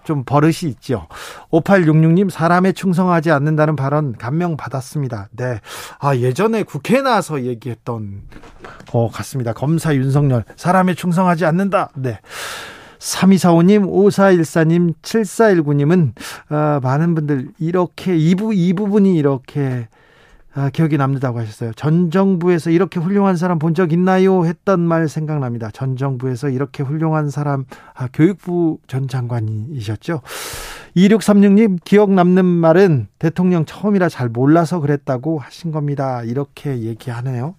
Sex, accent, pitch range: male, native, 140-180 Hz